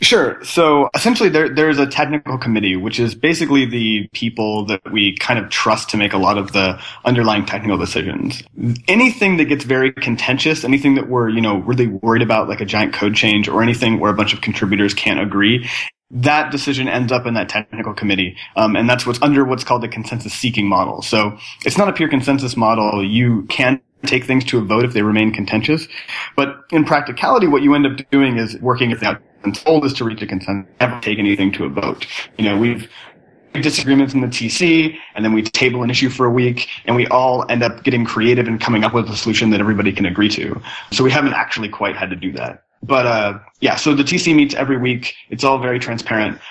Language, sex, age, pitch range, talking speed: English, male, 30-49, 105-135 Hz, 220 wpm